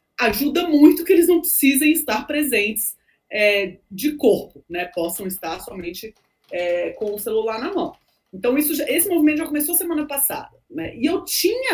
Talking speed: 175 wpm